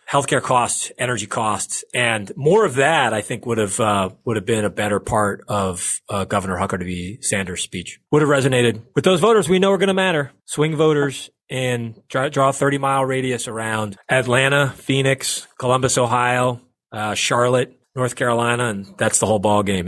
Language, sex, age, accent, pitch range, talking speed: English, male, 30-49, American, 105-145 Hz, 185 wpm